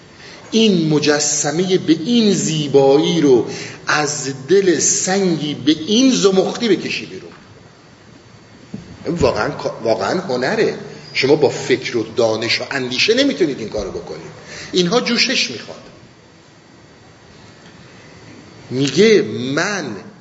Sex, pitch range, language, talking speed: male, 140-195 Hz, Persian, 100 wpm